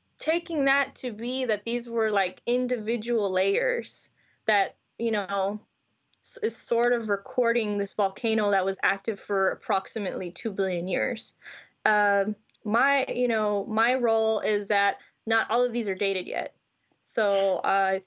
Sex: female